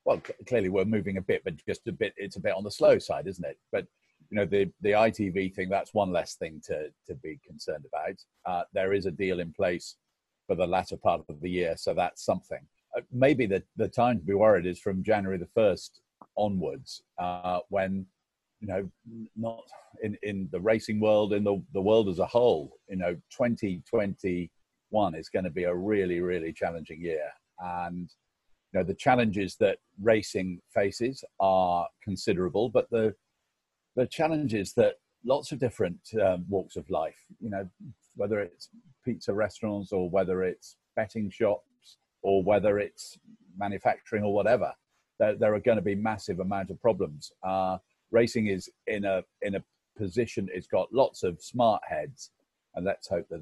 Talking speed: 190 wpm